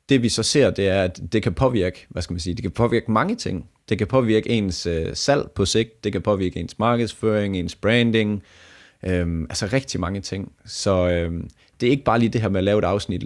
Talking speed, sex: 235 wpm, male